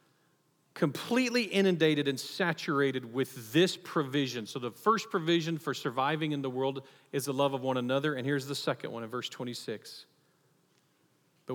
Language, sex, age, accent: English, male, 40-59, American